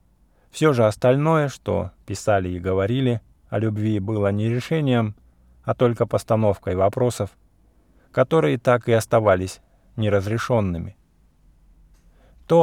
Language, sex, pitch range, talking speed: English, male, 95-115 Hz, 105 wpm